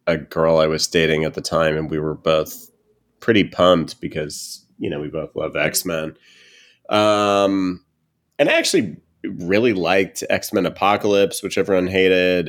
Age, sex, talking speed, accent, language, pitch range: 30-49, male, 155 wpm, American, English, 75-90 Hz